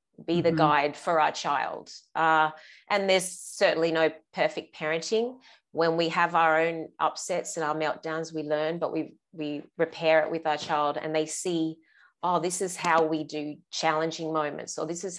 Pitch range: 155-170 Hz